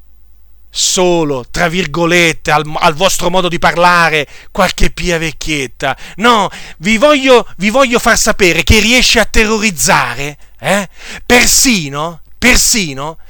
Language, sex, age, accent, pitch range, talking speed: Italian, male, 40-59, native, 170-235 Hz, 115 wpm